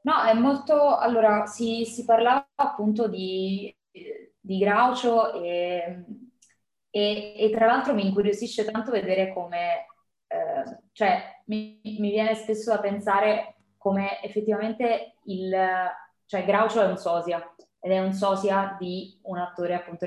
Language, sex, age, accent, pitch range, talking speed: Italian, female, 20-39, native, 180-225 Hz, 135 wpm